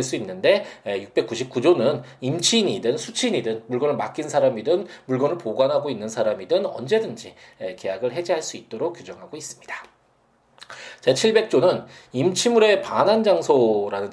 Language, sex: Korean, male